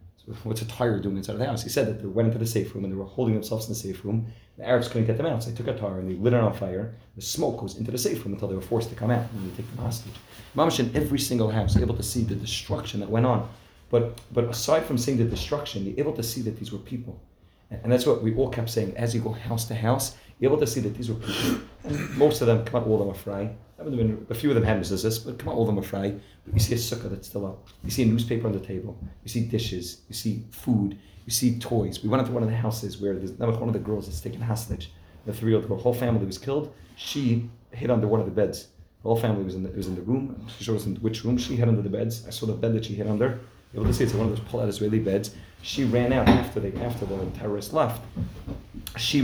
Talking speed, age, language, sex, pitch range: 290 wpm, 30-49, English, male, 100-120 Hz